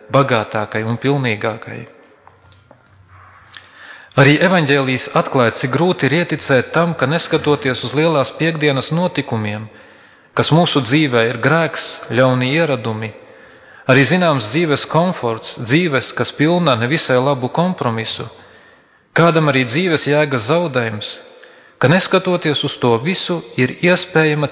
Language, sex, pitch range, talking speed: English, male, 125-170 Hz, 110 wpm